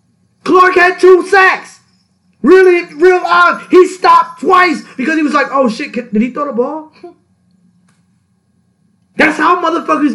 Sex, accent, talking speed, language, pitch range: male, American, 140 wpm, English, 200-300 Hz